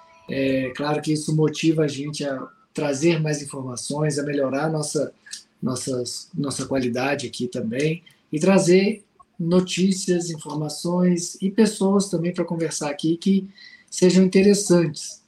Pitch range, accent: 150-180 Hz, Brazilian